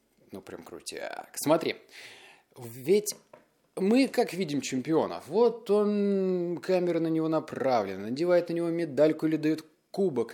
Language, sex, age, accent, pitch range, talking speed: Russian, male, 30-49, native, 115-170 Hz, 130 wpm